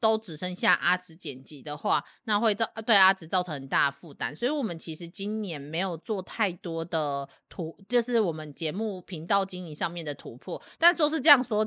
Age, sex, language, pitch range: 30-49, female, Chinese, 160-220 Hz